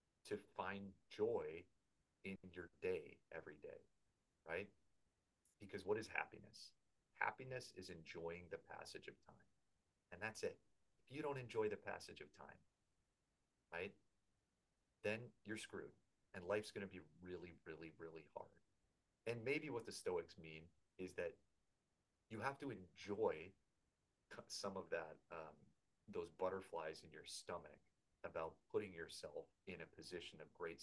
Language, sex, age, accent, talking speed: English, male, 30-49, American, 140 wpm